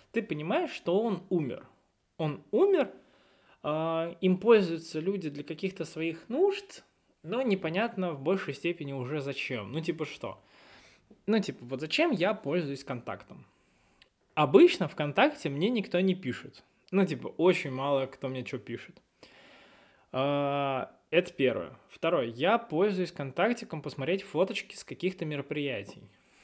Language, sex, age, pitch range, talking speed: Russian, male, 20-39, 140-195 Hz, 130 wpm